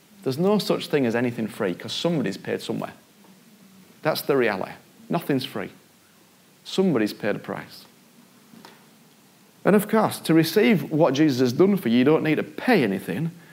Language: English